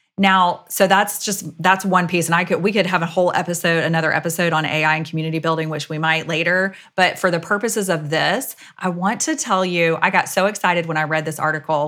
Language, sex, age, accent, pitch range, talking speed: English, female, 30-49, American, 160-205 Hz, 235 wpm